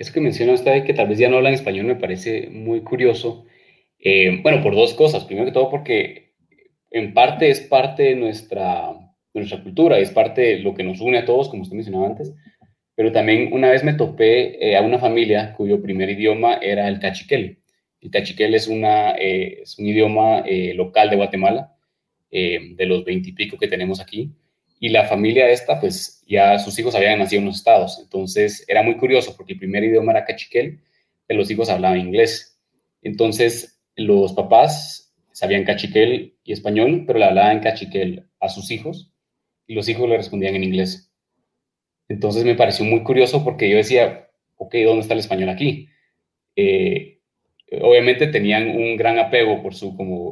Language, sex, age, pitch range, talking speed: Spanish, male, 30-49, 100-135 Hz, 185 wpm